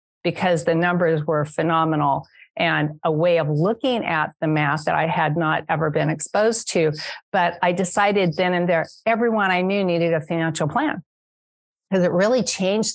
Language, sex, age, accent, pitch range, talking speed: English, female, 50-69, American, 165-220 Hz, 175 wpm